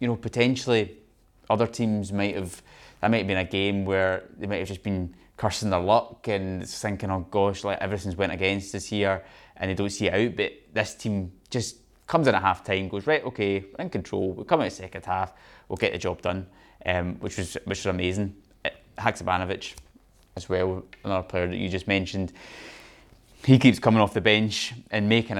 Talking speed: 205 wpm